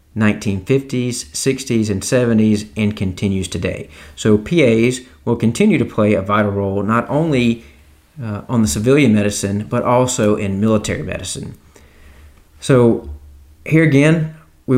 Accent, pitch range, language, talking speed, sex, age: American, 100-125 Hz, English, 130 wpm, male, 40-59